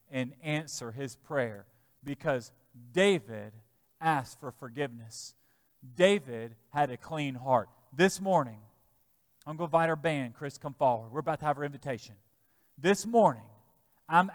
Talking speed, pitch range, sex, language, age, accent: 140 wpm, 120-170 Hz, male, English, 40-59, American